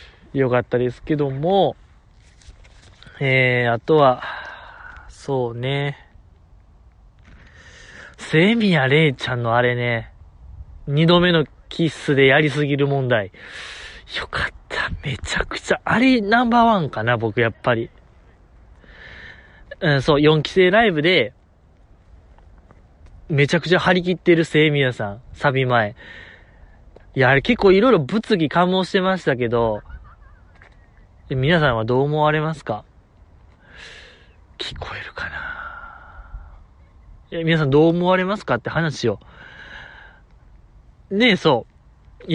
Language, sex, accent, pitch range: Japanese, male, native, 110-180 Hz